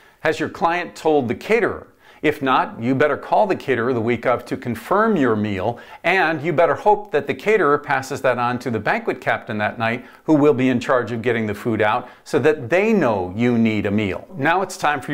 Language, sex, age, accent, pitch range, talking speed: English, male, 50-69, American, 125-170 Hz, 230 wpm